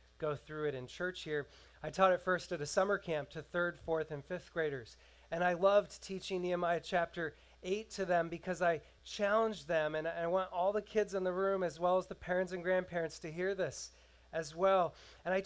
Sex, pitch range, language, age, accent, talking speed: male, 155-195 Hz, English, 30-49, American, 215 wpm